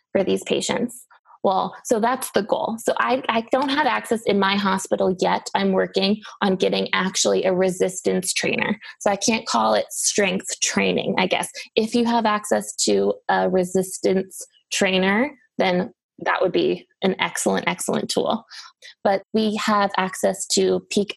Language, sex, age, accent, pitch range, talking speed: English, female, 20-39, American, 185-220 Hz, 160 wpm